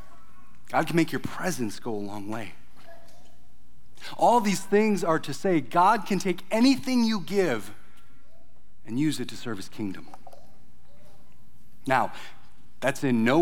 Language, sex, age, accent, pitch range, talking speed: English, male, 30-49, American, 125-195 Hz, 145 wpm